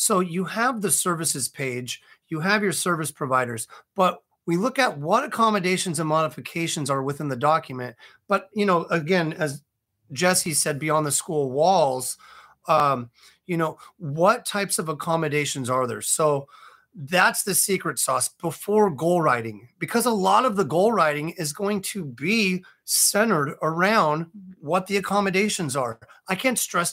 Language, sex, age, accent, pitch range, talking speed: English, male, 30-49, American, 150-185 Hz, 160 wpm